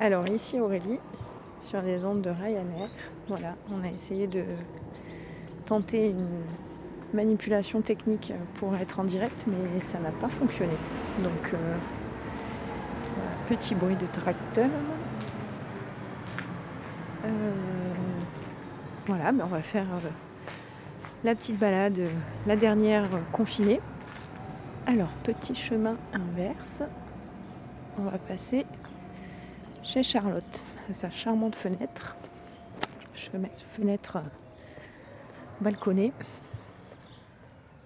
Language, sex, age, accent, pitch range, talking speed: French, female, 30-49, French, 180-220 Hz, 95 wpm